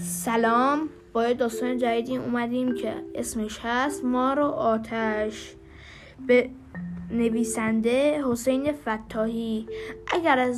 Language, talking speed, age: Persian, 95 wpm, 10-29